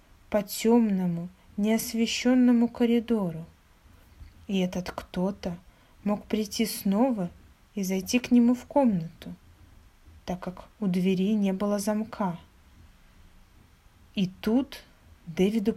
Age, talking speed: 20-39, 100 wpm